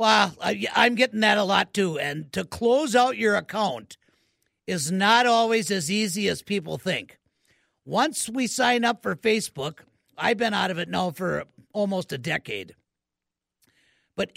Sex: male